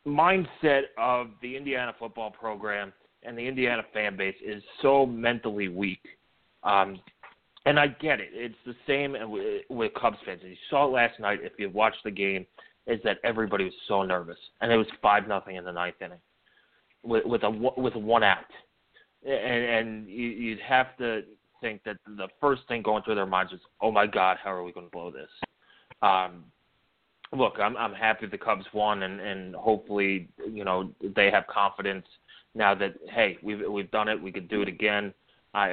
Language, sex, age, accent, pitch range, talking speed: English, male, 30-49, American, 100-125 Hz, 190 wpm